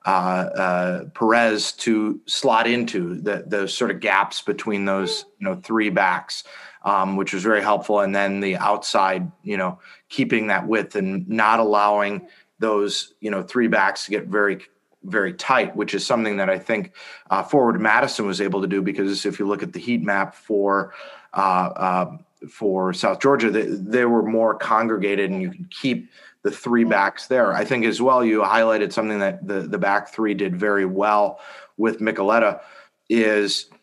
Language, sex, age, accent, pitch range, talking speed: English, male, 30-49, American, 100-115 Hz, 175 wpm